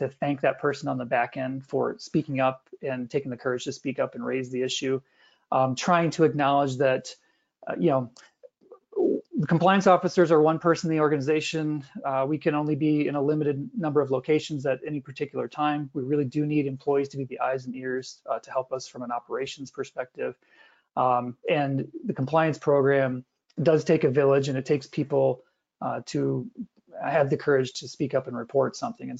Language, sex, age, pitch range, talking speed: English, male, 30-49, 130-155 Hz, 200 wpm